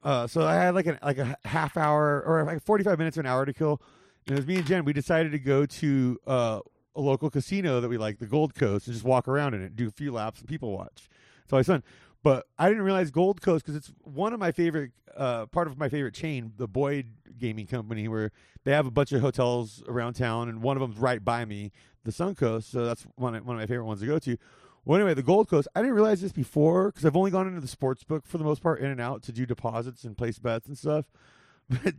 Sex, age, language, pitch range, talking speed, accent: male, 30-49, English, 125-165 Hz, 265 wpm, American